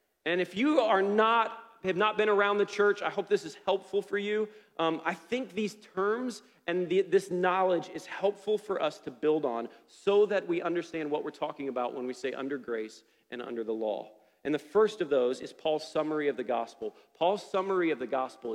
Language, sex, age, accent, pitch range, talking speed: English, male, 40-59, American, 155-210 Hz, 215 wpm